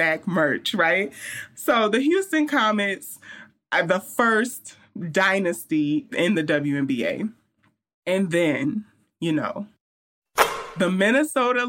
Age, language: 30-49, English